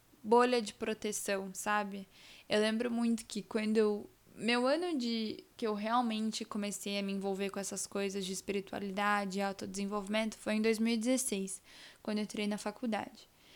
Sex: female